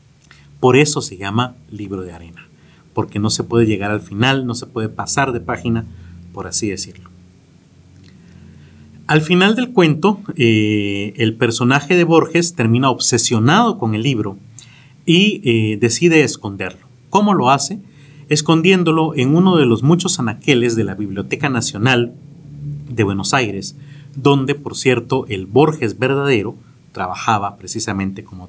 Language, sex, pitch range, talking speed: Spanish, male, 110-155 Hz, 140 wpm